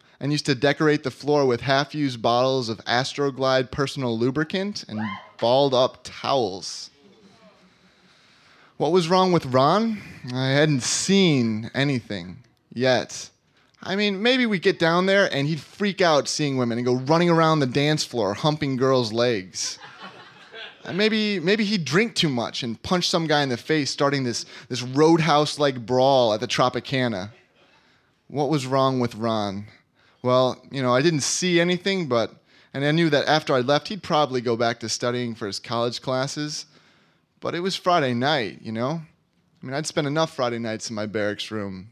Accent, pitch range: American, 120-160 Hz